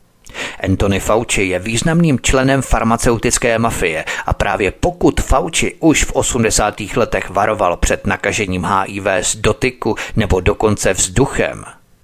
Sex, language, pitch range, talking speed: male, Czech, 100-115 Hz, 120 wpm